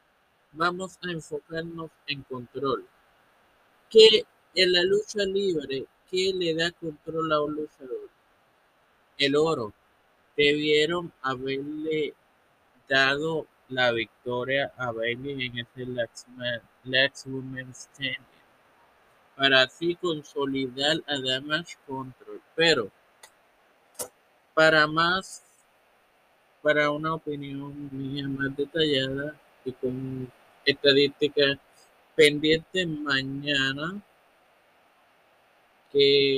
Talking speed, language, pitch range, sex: 85 wpm, Spanish, 135-160 Hz, male